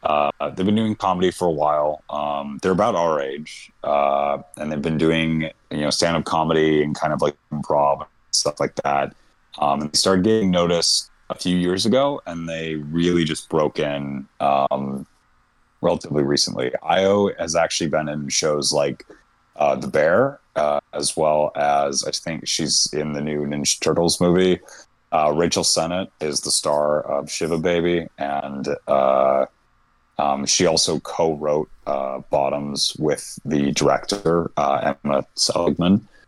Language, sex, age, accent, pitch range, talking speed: English, male, 30-49, American, 75-90 Hz, 160 wpm